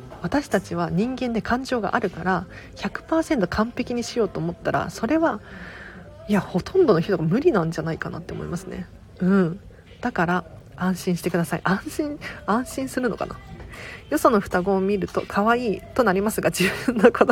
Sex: female